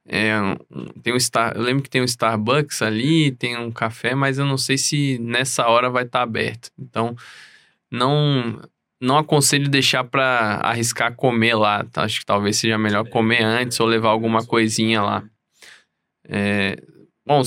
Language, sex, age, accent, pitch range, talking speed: Portuguese, male, 20-39, Brazilian, 115-145 Hz, 170 wpm